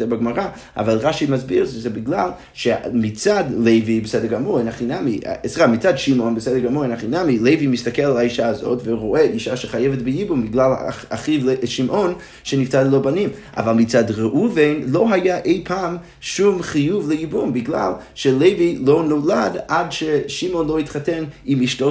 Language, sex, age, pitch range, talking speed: Hebrew, male, 30-49, 115-155 Hz, 155 wpm